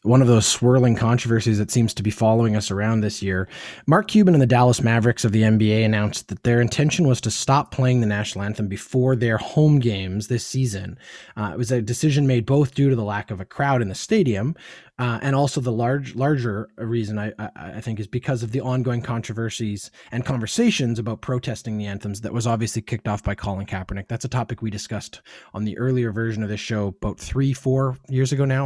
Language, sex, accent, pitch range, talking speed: English, male, American, 110-135 Hz, 220 wpm